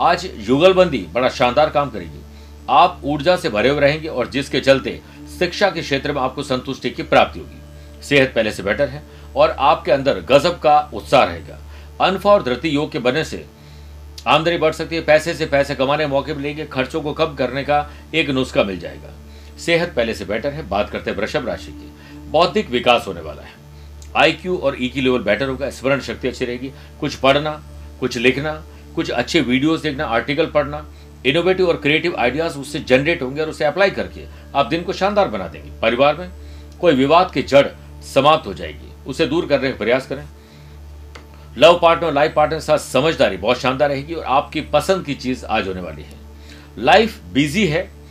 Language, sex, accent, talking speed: Hindi, male, native, 140 wpm